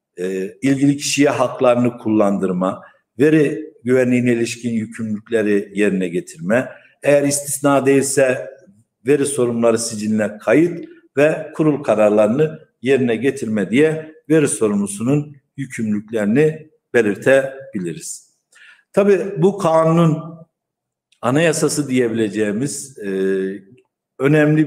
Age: 60-79